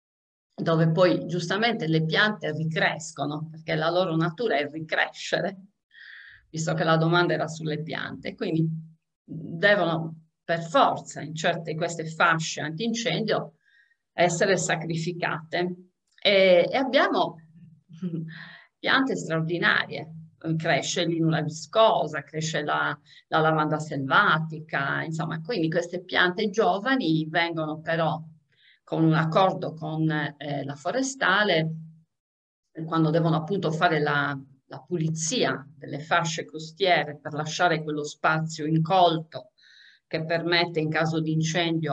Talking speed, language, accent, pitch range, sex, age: 110 wpm, Italian, native, 155-180 Hz, female, 50-69